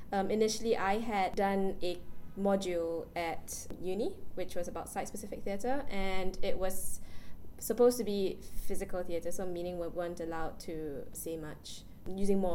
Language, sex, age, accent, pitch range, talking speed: English, female, 10-29, Malaysian, 170-200 Hz, 155 wpm